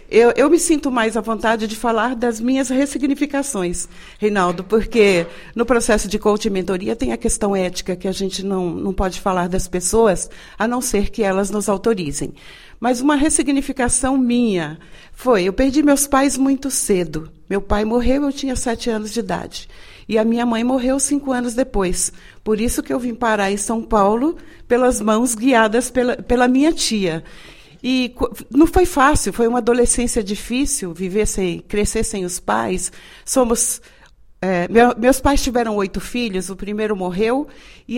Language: Portuguese